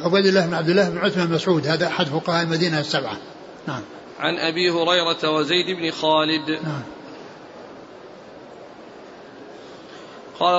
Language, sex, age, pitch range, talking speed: Arabic, male, 40-59, 175-195 Hz, 125 wpm